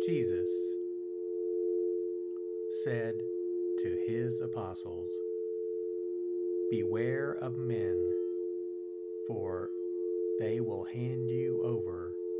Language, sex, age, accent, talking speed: English, male, 50-69, American, 70 wpm